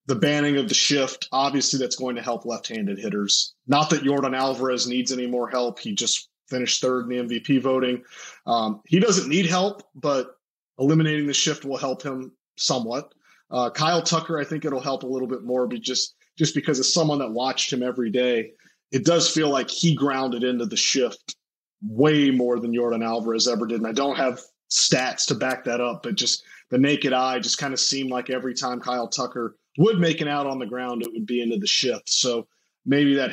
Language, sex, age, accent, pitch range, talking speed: English, male, 30-49, American, 125-155 Hz, 210 wpm